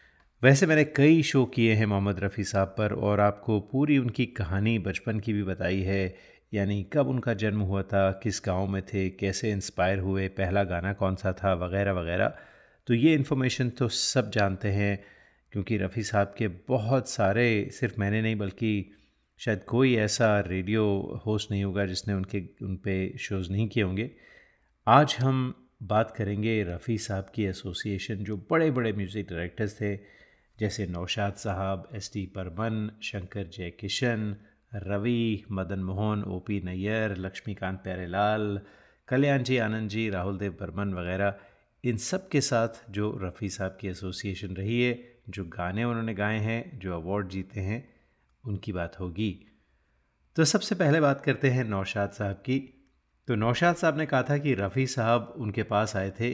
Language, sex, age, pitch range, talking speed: Hindi, male, 30-49, 95-120 Hz, 165 wpm